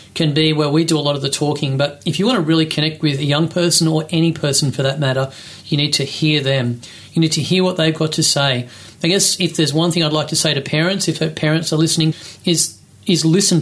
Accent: Australian